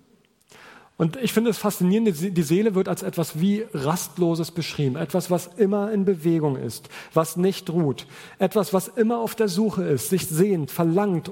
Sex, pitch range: male, 155-195 Hz